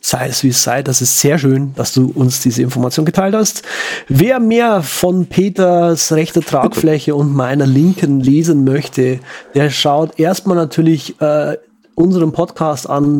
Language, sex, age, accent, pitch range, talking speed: German, male, 30-49, German, 135-175 Hz, 160 wpm